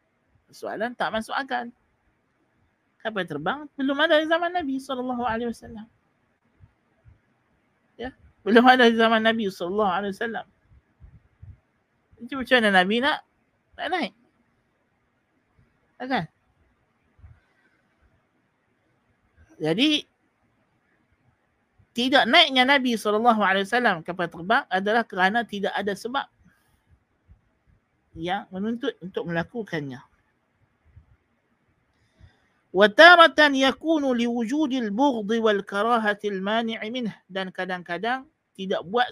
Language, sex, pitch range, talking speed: Malay, male, 190-265 Hz, 80 wpm